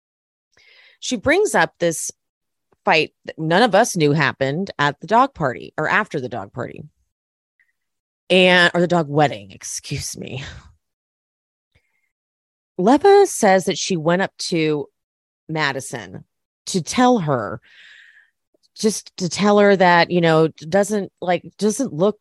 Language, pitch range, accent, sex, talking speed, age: English, 150-215 Hz, American, female, 130 wpm, 30-49